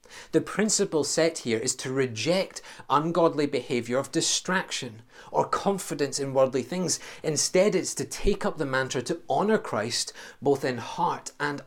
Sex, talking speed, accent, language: male, 155 wpm, British, English